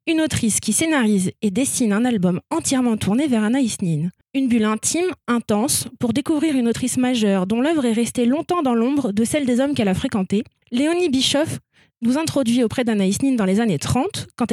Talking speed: 200 wpm